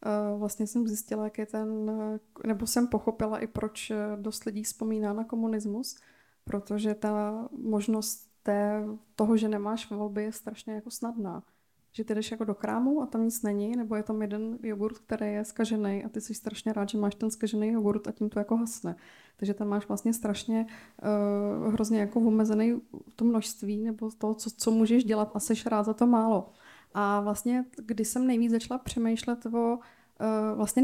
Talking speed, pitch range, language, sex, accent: 185 wpm, 215-230 Hz, Czech, female, native